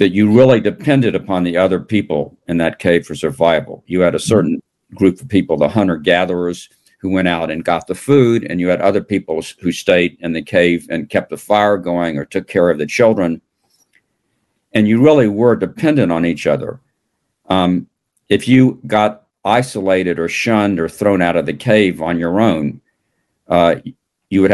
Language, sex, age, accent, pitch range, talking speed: English, male, 50-69, American, 85-105 Hz, 190 wpm